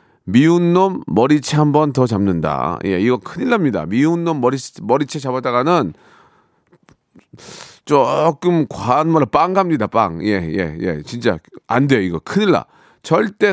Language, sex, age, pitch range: Korean, male, 40-59, 135-200 Hz